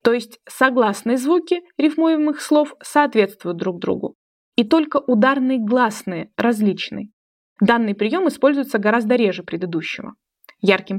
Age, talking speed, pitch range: 20-39, 115 wpm, 205-265 Hz